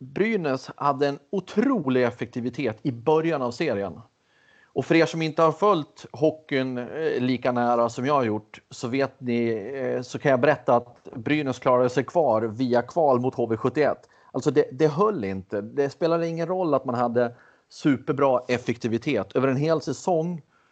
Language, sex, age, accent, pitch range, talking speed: Swedish, male, 30-49, native, 120-150 Hz, 165 wpm